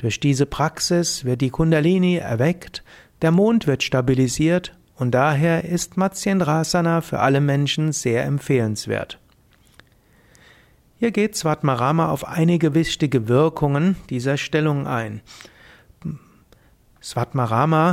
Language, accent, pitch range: German, German, 130-175 Hz